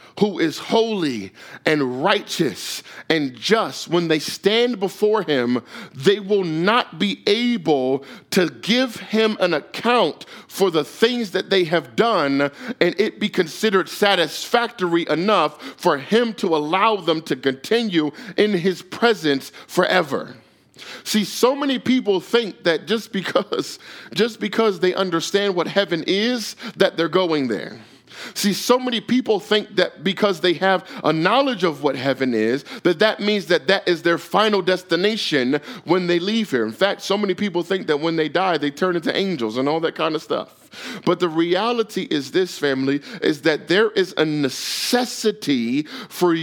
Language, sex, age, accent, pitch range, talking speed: English, male, 40-59, American, 165-215 Hz, 165 wpm